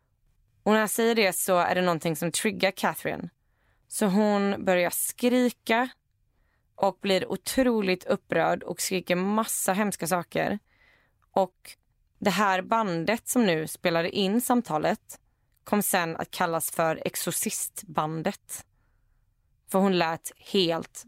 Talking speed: 125 wpm